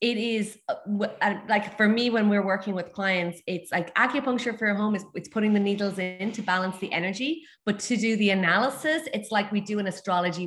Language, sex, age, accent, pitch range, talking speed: English, female, 20-39, Irish, 185-225 Hz, 230 wpm